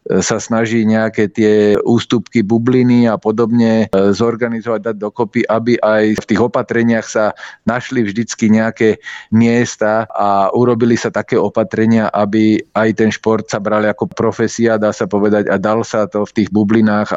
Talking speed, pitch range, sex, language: 155 wpm, 105-115 Hz, male, Slovak